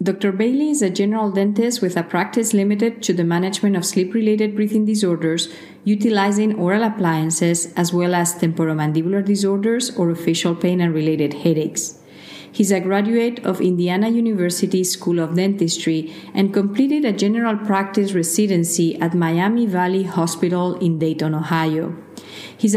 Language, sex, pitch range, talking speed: English, female, 170-210 Hz, 140 wpm